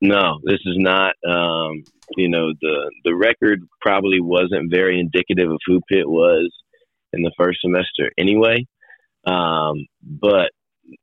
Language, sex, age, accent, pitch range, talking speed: English, male, 30-49, American, 80-90 Hz, 140 wpm